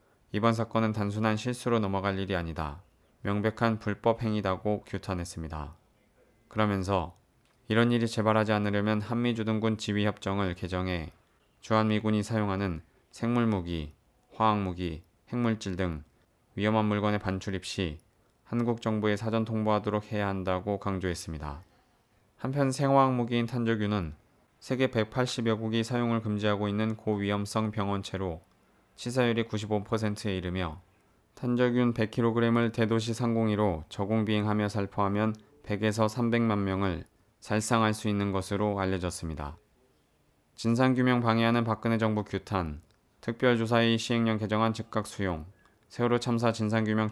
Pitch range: 95-115 Hz